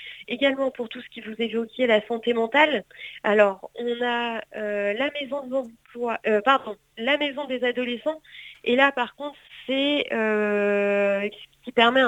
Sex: female